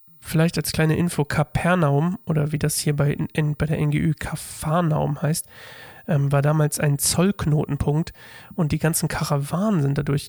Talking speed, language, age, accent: 155 wpm, German, 40-59, German